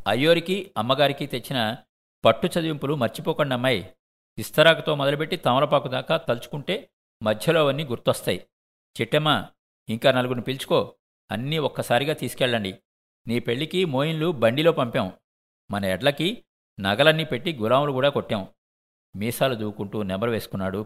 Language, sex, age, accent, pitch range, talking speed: Telugu, male, 50-69, native, 100-140 Hz, 105 wpm